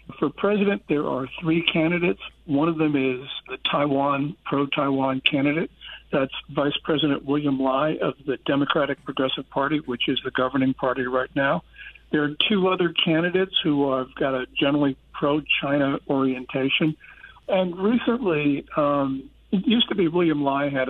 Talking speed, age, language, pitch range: 150 wpm, 60-79, English, 140-170 Hz